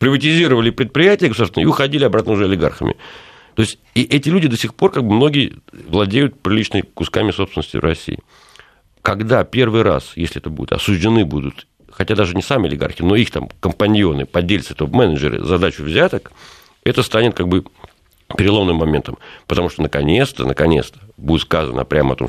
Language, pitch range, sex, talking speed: Russian, 80-115 Hz, male, 165 wpm